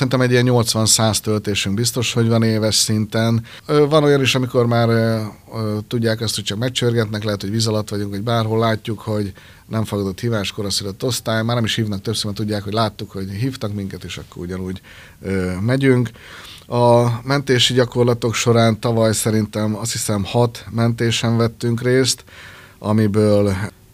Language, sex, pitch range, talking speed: Hungarian, male, 100-115 Hz, 155 wpm